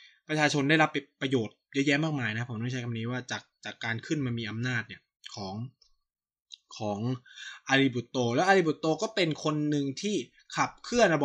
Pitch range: 120-160 Hz